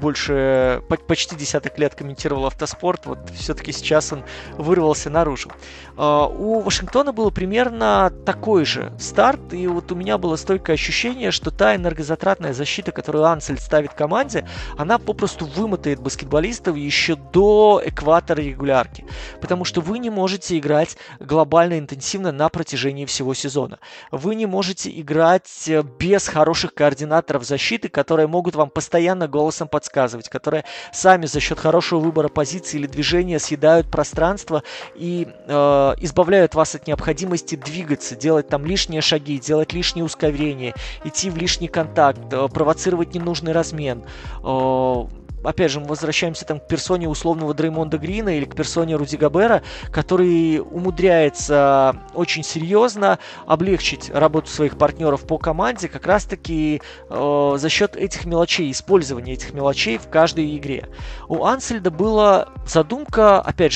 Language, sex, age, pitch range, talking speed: Russian, male, 20-39, 145-180 Hz, 135 wpm